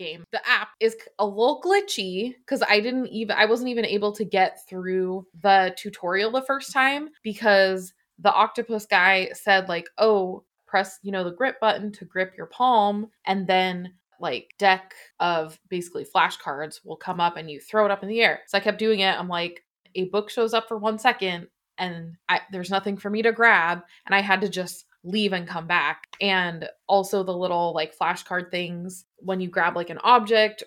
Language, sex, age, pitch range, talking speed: English, female, 20-39, 180-220 Hz, 200 wpm